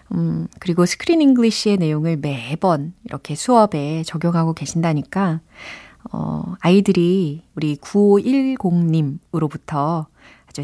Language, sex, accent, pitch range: Korean, female, native, 160-255 Hz